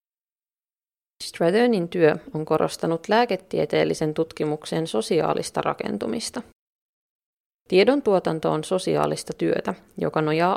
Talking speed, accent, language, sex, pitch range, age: 85 wpm, native, Finnish, female, 155-190 Hz, 30-49